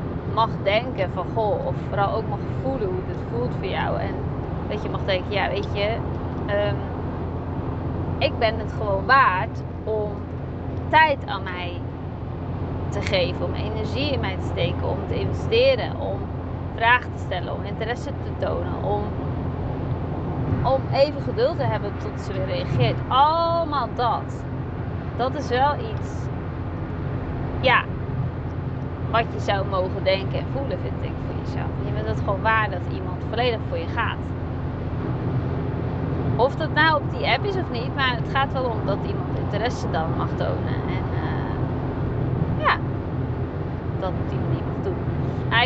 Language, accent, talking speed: Dutch, Dutch, 155 wpm